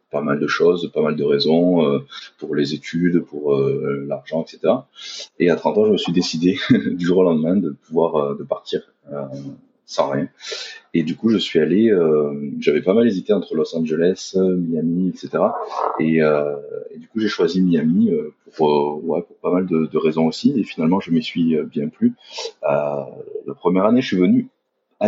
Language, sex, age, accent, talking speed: French, male, 30-49, French, 205 wpm